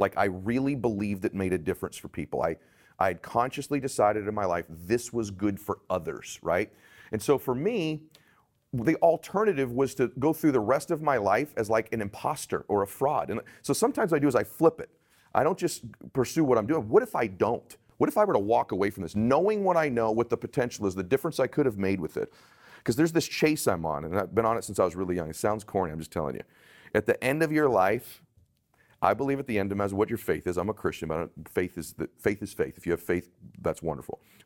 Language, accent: English, American